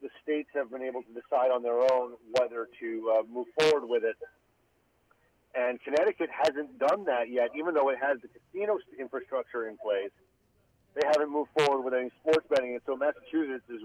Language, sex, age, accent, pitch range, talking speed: English, male, 40-59, American, 120-145 Hz, 190 wpm